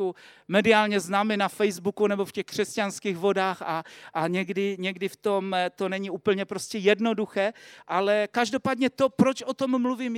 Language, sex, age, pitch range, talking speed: Czech, male, 40-59, 200-245 Hz, 160 wpm